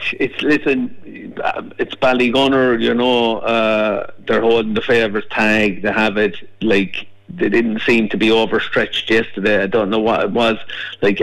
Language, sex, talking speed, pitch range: English, male, 160 wpm, 105-120 Hz